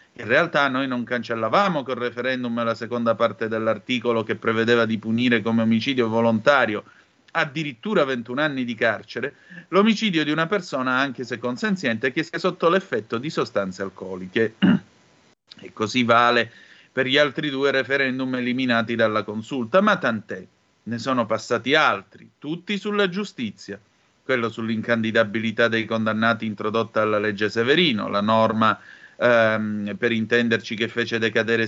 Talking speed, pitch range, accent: 135 wpm, 115-145 Hz, native